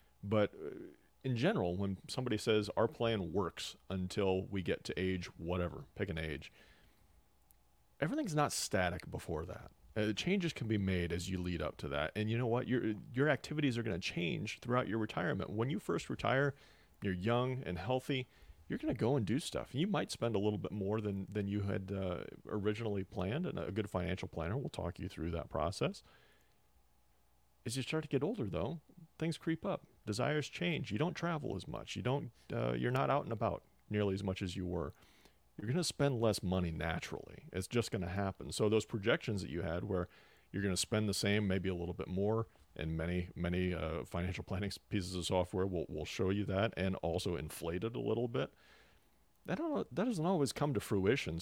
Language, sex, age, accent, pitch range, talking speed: English, male, 40-59, American, 90-115 Hz, 205 wpm